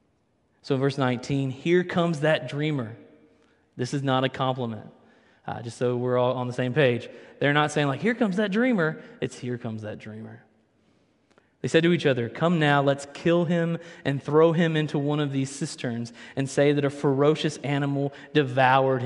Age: 20-39